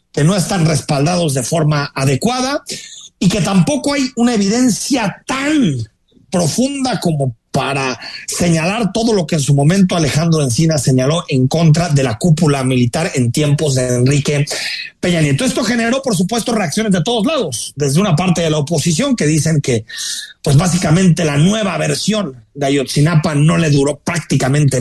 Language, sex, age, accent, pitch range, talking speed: Spanish, male, 40-59, Mexican, 150-235 Hz, 160 wpm